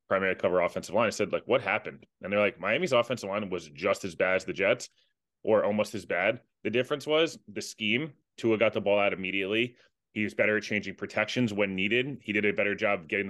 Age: 20-39